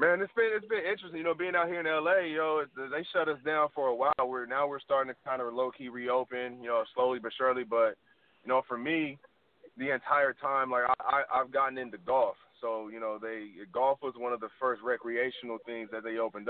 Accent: American